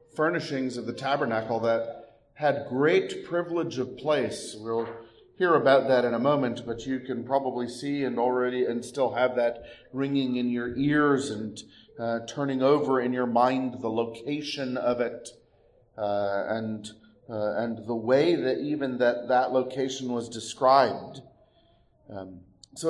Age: 40-59